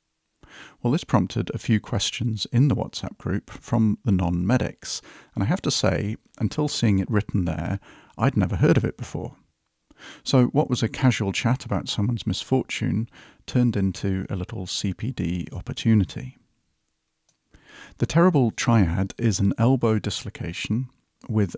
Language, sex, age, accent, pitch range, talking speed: English, male, 40-59, British, 95-120 Hz, 145 wpm